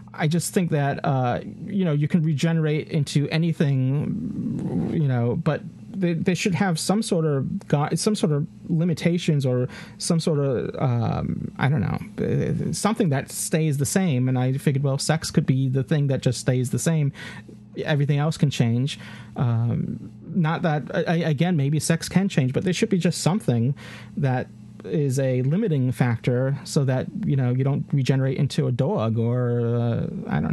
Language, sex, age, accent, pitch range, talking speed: English, male, 30-49, American, 130-170 Hz, 180 wpm